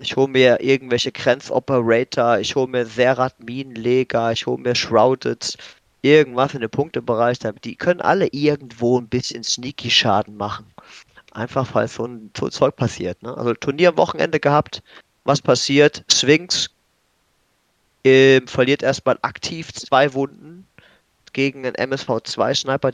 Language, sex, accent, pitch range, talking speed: German, male, German, 115-135 Hz, 140 wpm